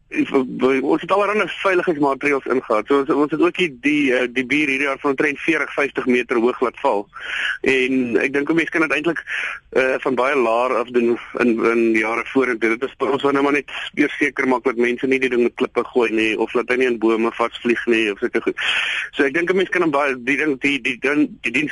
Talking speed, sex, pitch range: 230 wpm, male, 125-180 Hz